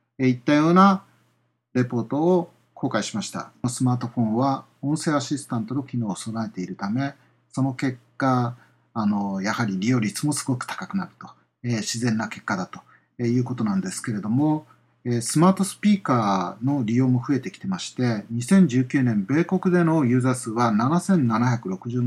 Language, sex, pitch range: Japanese, male, 115-150 Hz